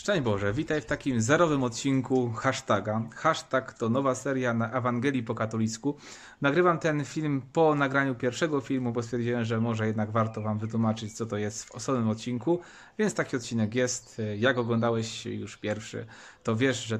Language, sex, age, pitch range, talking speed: Polish, male, 30-49, 110-135 Hz, 170 wpm